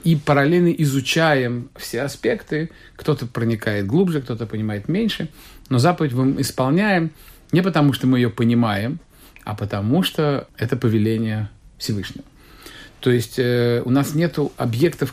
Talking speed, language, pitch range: 135 wpm, Russian, 105-135 Hz